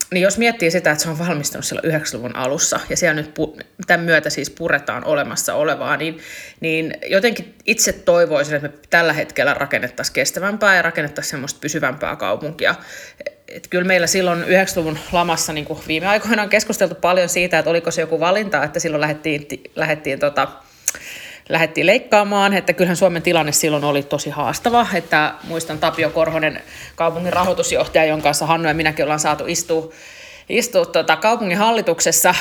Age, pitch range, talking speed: 30-49, 155-185 Hz, 165 wpm